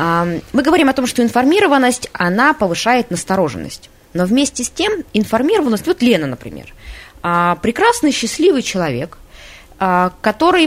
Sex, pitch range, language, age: female, 175-240 Hz, Russian, 20-39